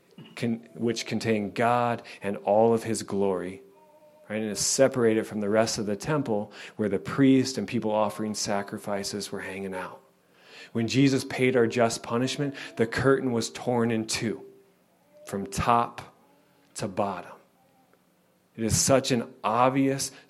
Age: 40-59